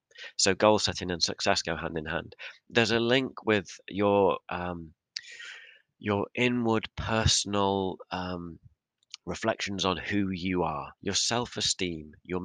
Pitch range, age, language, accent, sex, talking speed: 85-105 Hz, 30-49, English, British, male, 130 wpm